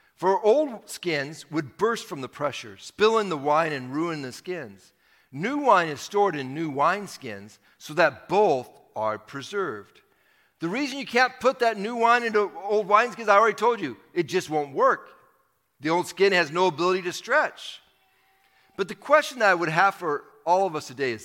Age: 50-69